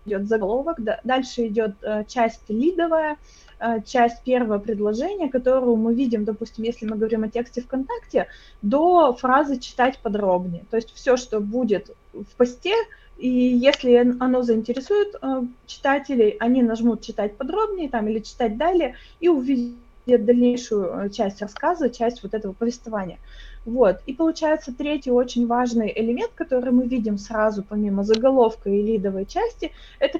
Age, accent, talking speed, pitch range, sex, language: 20-39, native, 140 wpm, 215-265 Hz, female, Russian